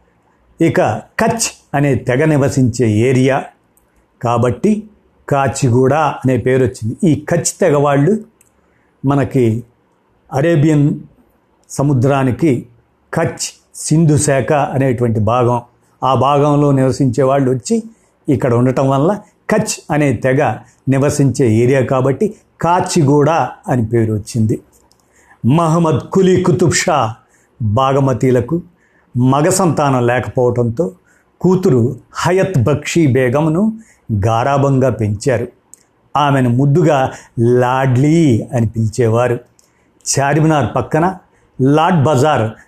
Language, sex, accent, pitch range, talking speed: Telugu, male, native, 125-165 Hz, 85 wpm